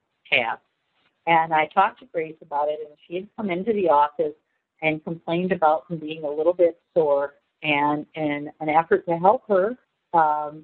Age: 50-69